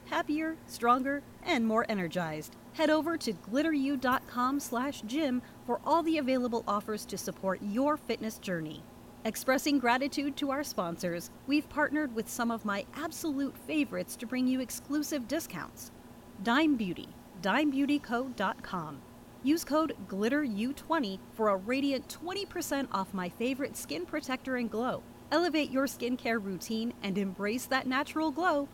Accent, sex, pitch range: American, female, 205-290 Hz